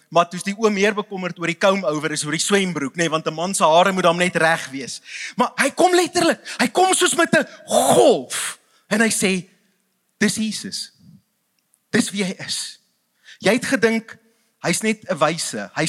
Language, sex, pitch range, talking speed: English, male, 175-245 Hz, 195 wpm